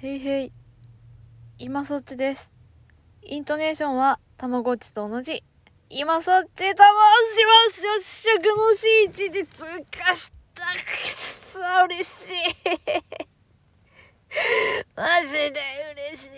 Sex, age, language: female, 20-39, Japanese